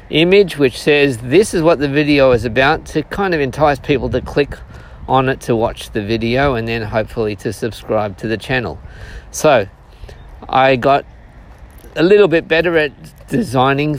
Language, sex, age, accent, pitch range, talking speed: English, male, 50-69, Australian, 125-165 Hz, 170 wpm